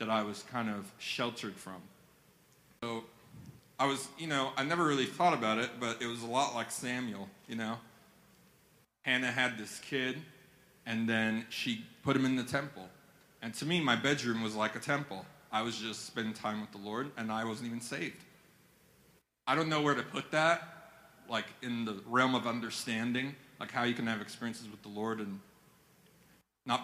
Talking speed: 190 wpm